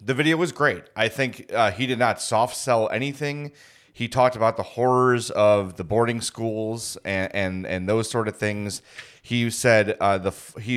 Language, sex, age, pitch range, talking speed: English, male, 30-49, 105-125 Hz, 185 wpm